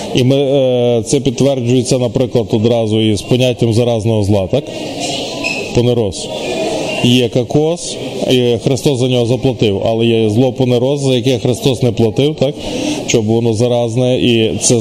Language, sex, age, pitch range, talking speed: Ukrainian, male, 20-39, 120-150 Hz, 140 wpm